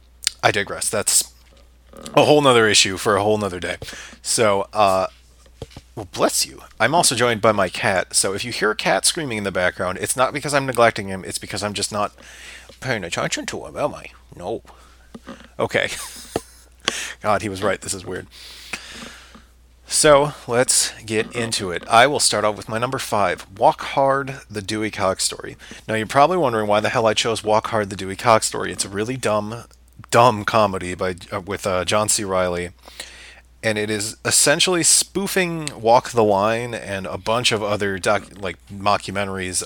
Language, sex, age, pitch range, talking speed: English, male, 30-49, 95-115 Hz, 185 wpm